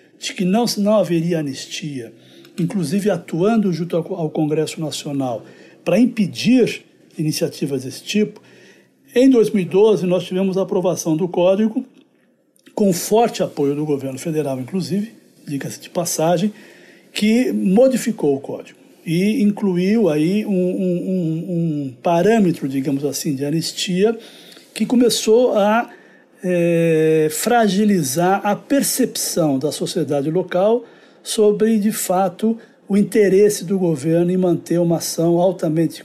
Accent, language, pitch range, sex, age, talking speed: Brazilian, Portuguese, 160-210 Hz, male, 60-79, 120 wpm